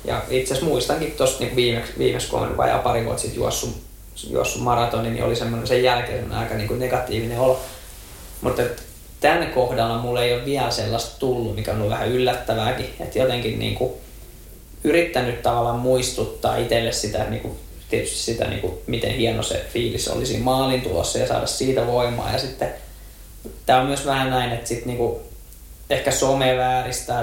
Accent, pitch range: native, 110-125 Hz